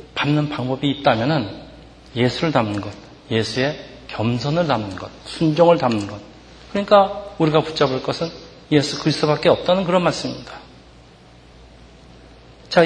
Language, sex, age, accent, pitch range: Korean, male, 40-59, native, 115-170 Hz